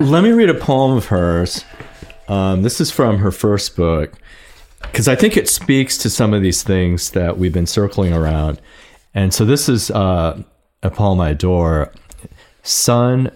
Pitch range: 70-100 Hz